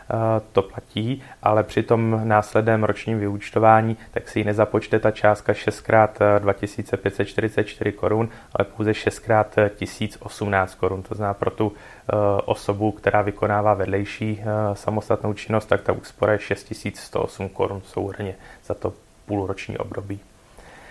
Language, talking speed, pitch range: Czech, 120 wpm, 100-115 Hz